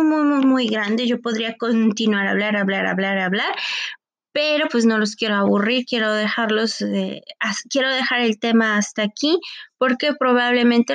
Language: Spanish